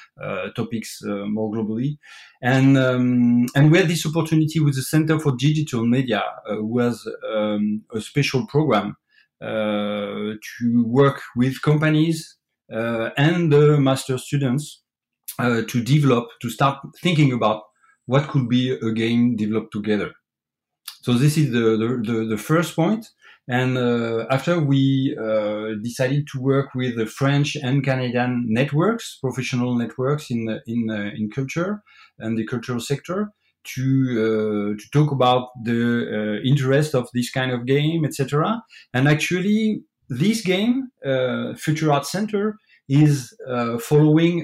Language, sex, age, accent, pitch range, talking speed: English, male, 30-49, French, 120-155 Hz, 145 wpm